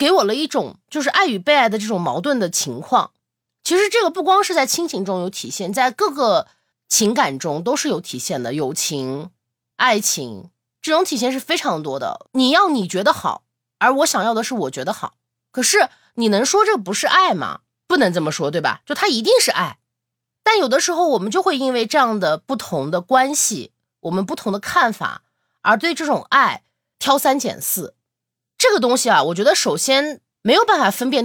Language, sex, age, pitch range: Chinese, female, 20-39, 195-315 Hz